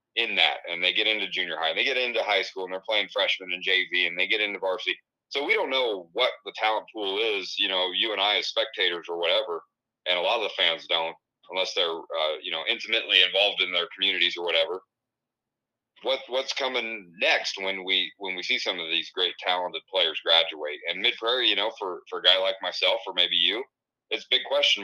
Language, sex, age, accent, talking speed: English, male, 30-49, American, 230 wpm